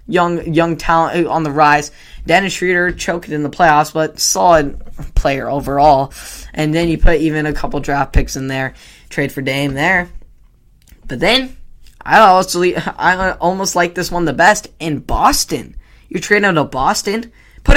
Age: 10-29